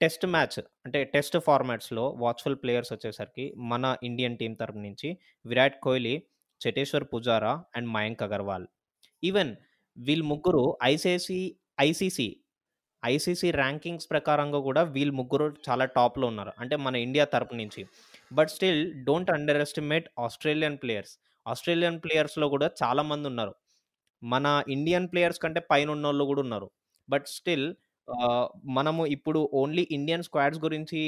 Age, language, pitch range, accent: 20-39, Telugu, 120-150 Hz, native